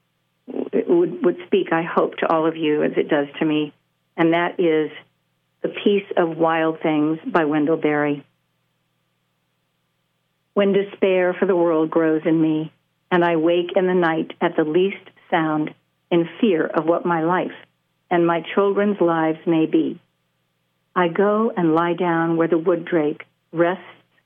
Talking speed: 160 wpm